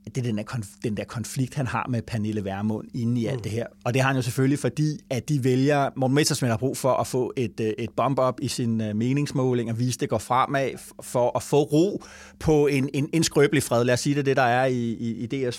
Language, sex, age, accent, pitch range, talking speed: Danish, male, 30-49, native, 115-145 Hz, 265 wpm